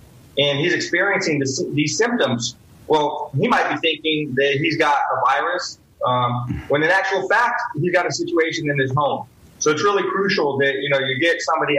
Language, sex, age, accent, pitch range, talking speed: English, male, 30-49, American, 130-150 Hz, 195 wpm